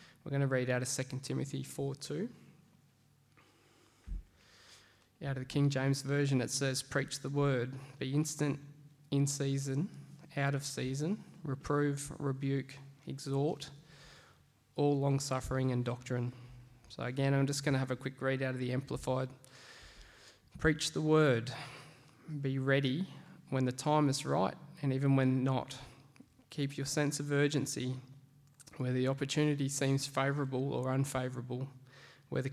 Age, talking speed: 20-39, 140 wpm